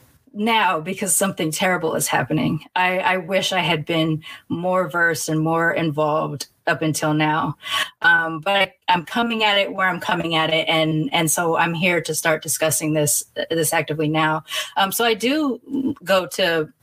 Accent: American